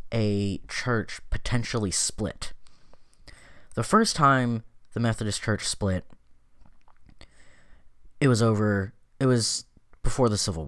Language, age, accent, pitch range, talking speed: English, 10-29, American, 85-110 Hz, 105 wpm